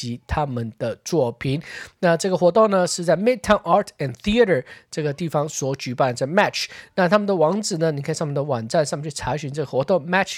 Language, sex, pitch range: Chinese, male, 145-200 Hz